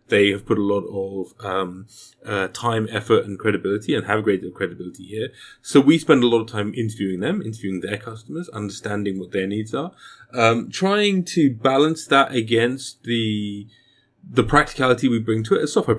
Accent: British